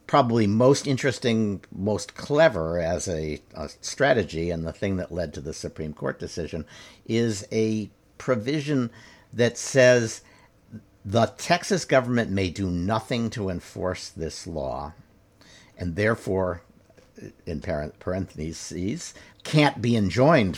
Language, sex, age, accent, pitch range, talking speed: English, male, 60-79, American, 95-120 Hz, 120 wpm